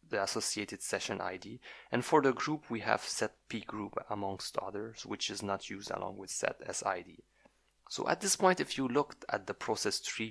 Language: English